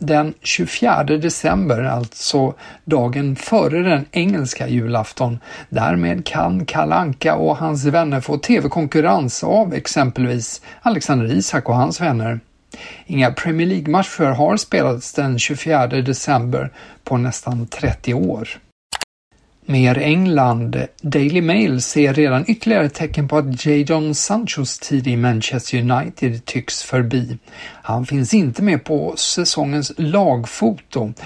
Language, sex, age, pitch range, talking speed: Swedish, male, 50-69, 125-155 Hz, 120 wpm